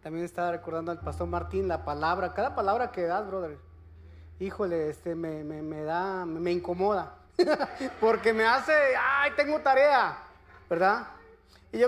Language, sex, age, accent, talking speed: Spanish, male, 30-49, Mexican, 150 wpm